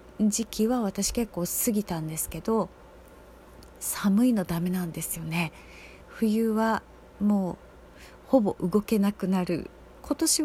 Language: Japanese